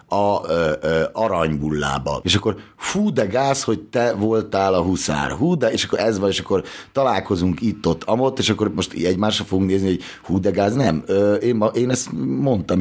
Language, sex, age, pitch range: Hungarian, male, 30-49, 85-110 Hz